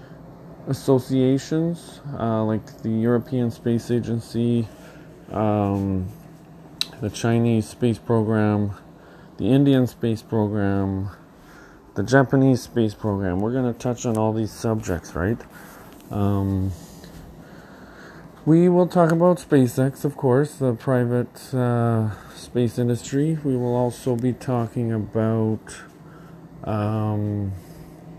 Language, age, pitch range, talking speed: English, 30-49, 105-135 Hz, 100 wpm